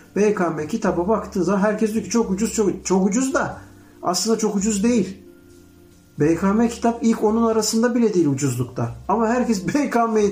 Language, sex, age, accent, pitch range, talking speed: Turkish, male, 60-79, native, 145-220 Hz, 165 wpm